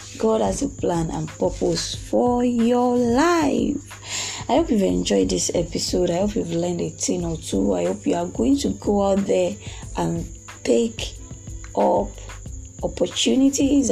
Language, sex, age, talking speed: English, female, 20-39, 155 wpm